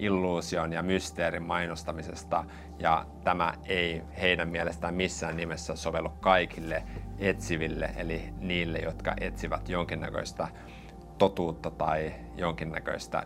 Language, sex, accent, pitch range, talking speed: Finnish, male, native, 80-90 Hz, 100 wpm